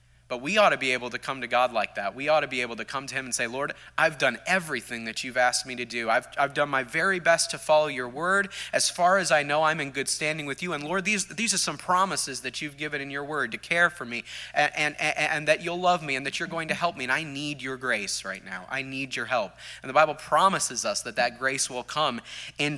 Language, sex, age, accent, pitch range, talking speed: English, male, 30-49, American, 125-165 Hz, 285 wpm